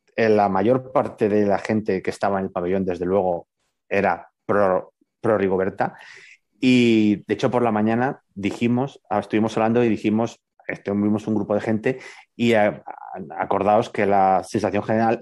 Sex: male